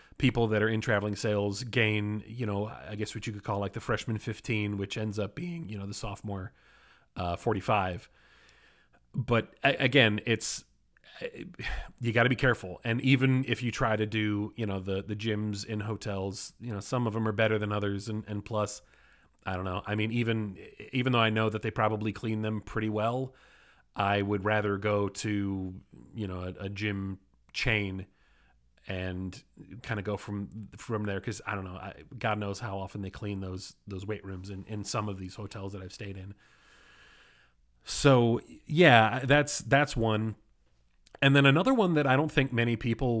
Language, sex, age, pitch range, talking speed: English, male, 30-49, 100-115 Hz, 190 wpm